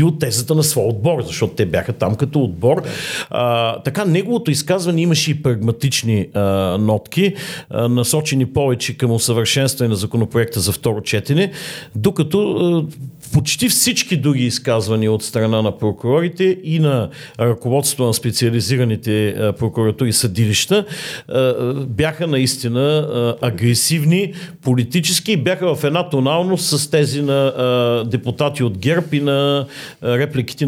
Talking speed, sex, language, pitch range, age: 125 wpm, male, Bulgarian, 120-155 Hz, 50-69